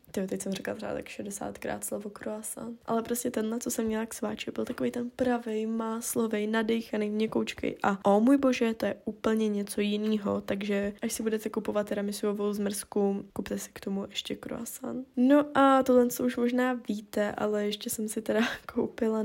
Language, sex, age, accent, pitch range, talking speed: Czech, female, 10-29, native, 205-235 Hz, 185 wpm